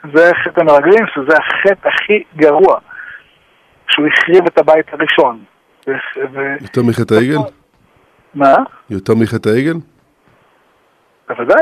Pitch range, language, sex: 155-200 Hz, Hebrew, male